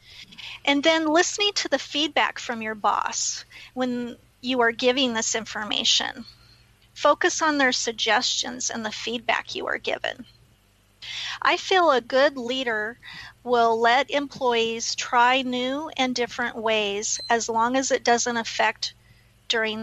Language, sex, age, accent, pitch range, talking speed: English, female, 40-59, American, 230-265 Hz, 135 wpm